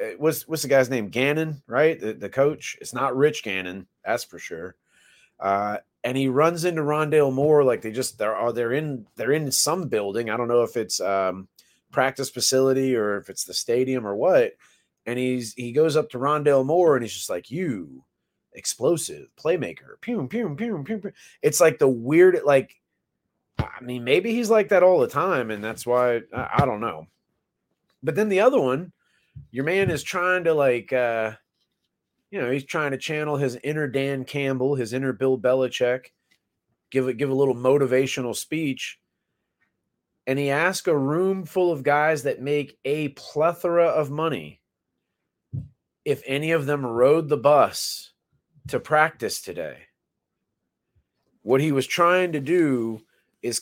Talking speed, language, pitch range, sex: 175 wpm, English, 125-155 Hz, male